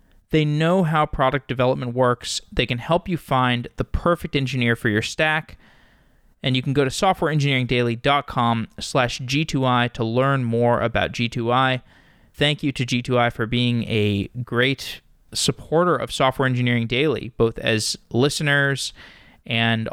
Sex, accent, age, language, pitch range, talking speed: male, American, 20-39, English, 115-140 Hz, 140 wpm